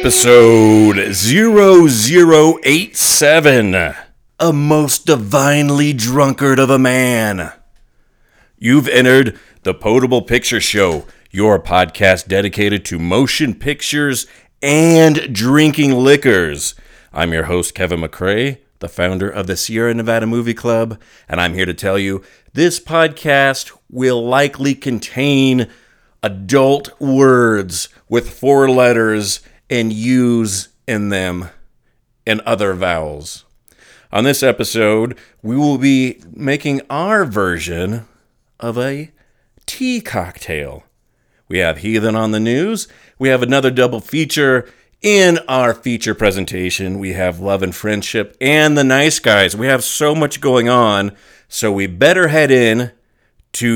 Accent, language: American, English